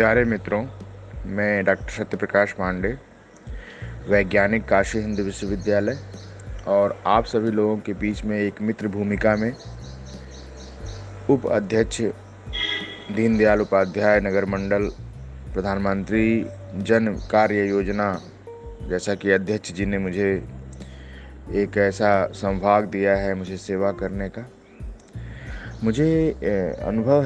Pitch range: 95-105 Hz